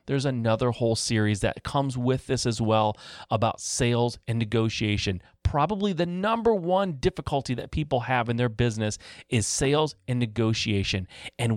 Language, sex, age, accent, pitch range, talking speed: English, male, 30-49, American, 110-135 Hz, 155 wpm